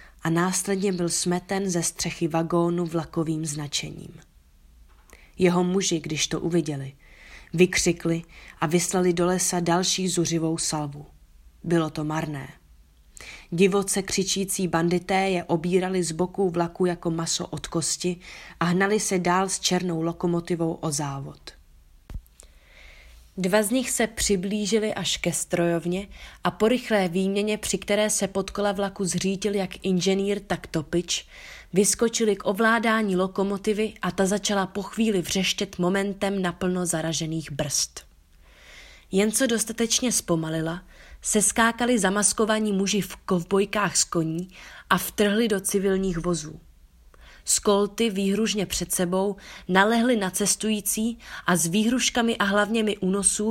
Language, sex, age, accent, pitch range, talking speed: Czech, female, 20-39, native, 165-205 Hz, 125 wpm